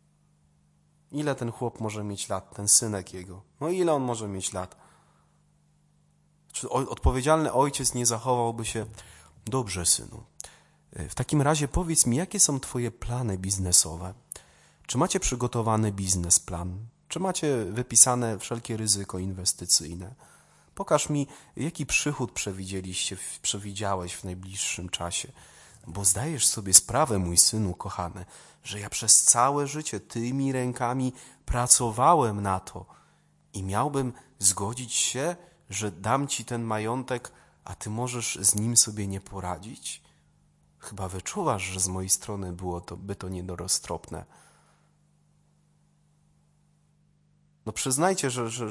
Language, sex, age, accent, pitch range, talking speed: Polish, male, 30-49, native, 95-140 Hz, 125 wpm